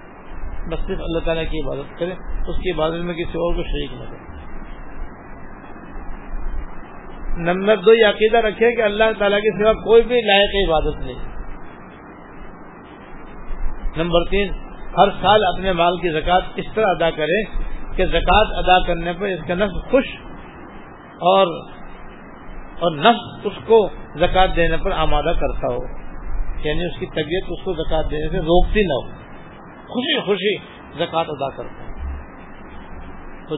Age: 50-69